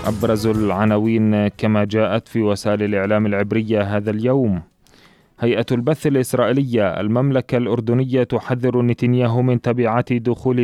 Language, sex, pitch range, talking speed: Arabic, male, 110-130 Hz, 115 wpm